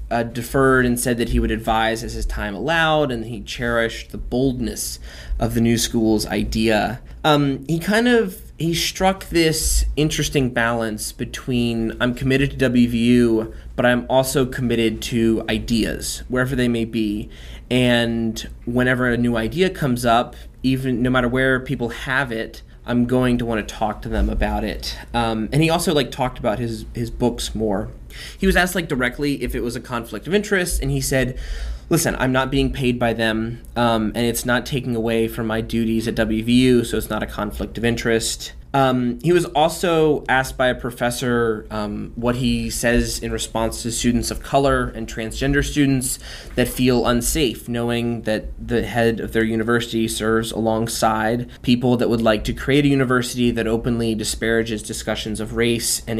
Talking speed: 180 wpm